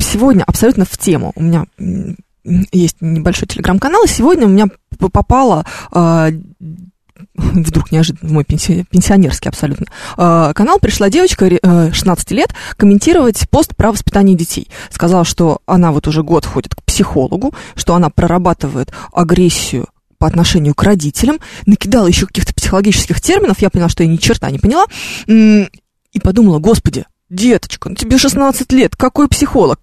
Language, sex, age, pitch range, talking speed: Russian, female, 20-39, 165-205 Hz, 145 wpm